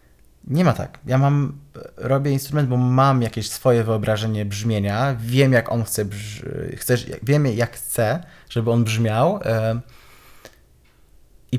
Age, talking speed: 20-39, 130 wpm